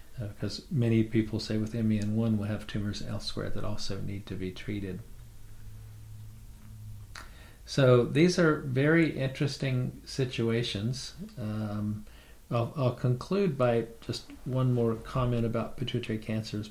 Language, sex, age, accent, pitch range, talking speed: English, male, 50-69, American, 105-120 Hz, 125 wpm